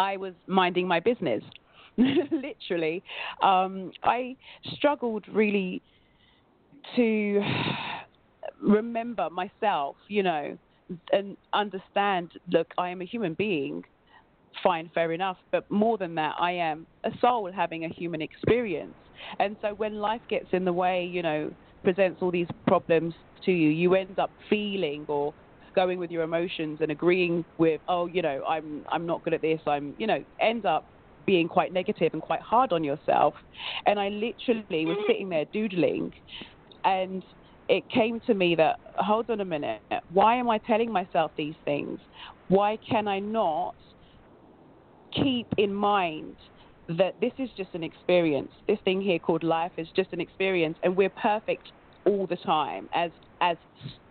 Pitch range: 165-210 Hz